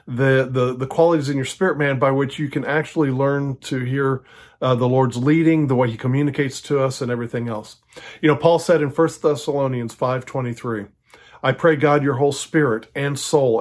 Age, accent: 40-59, American